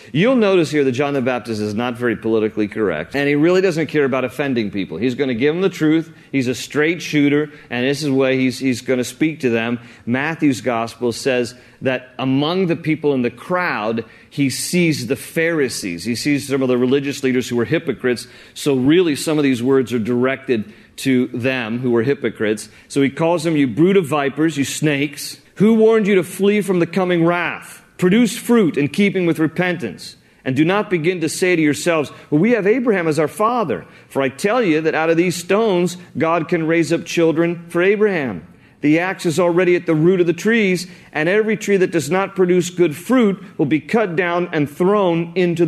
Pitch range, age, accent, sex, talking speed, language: 130-175 Hz, 40-59, American, male, 210 wpm, English